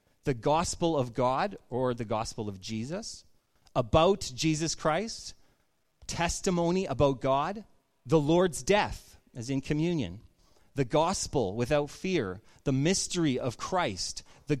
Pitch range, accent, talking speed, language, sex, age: 130-180 Hz, American, 125 wpm, English, male, 30-49